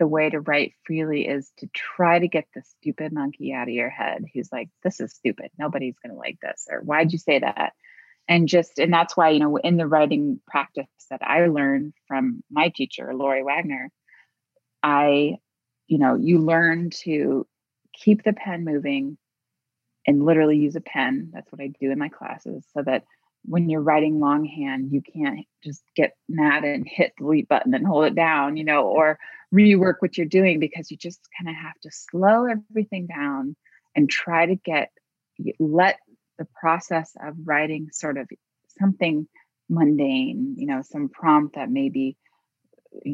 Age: 30-49